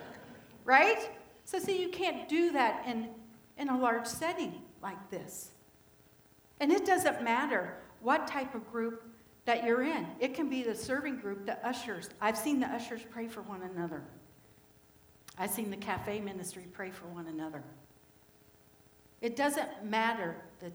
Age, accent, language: 60-79, American, English